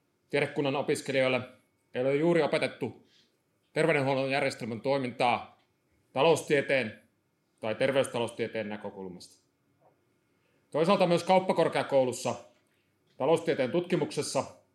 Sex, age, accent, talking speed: male, 30-49, native, 70 wpm